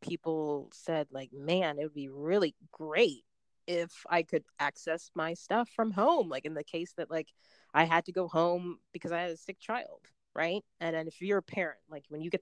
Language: English